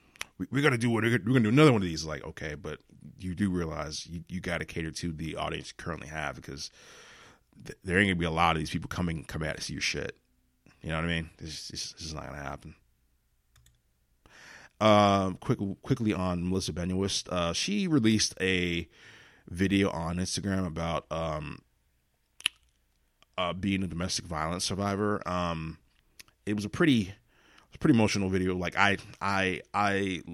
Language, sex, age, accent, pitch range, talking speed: English, male, 20-39, American, 80-100 Hz, 180 wpm